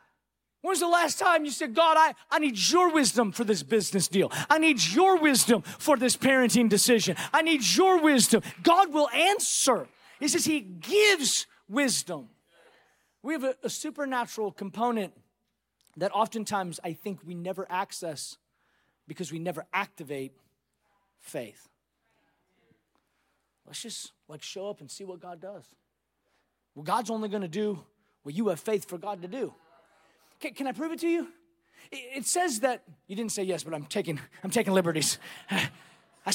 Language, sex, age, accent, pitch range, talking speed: English, male, 30-49, American, 180-270 Hz, 160 wpm